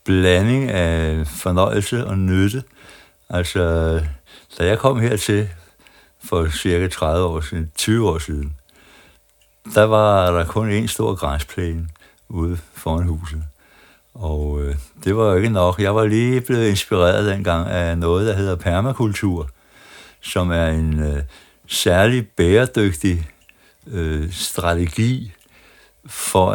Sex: male